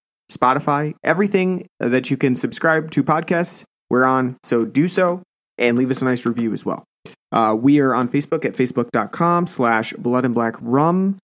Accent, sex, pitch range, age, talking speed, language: American, male, 120-170 Hz, 30-49, 175 wpm, English